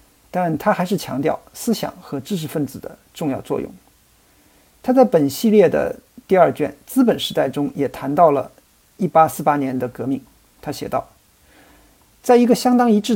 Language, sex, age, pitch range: Chinese, male, 50-69, 140-195 Hz